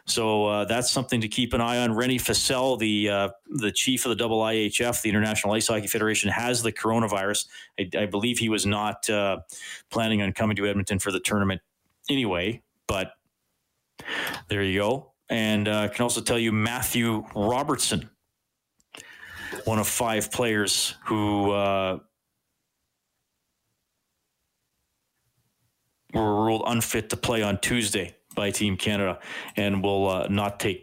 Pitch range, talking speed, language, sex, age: 100-115 Hz, 150 wpm, English, male, 40-59